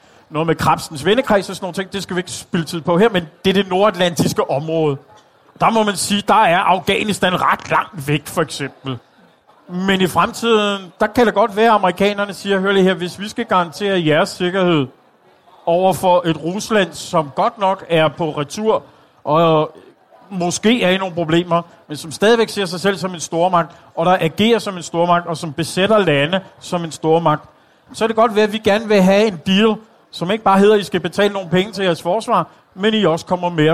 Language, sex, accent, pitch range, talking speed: Danish, male, native, 165-205 Hz, 215 wpm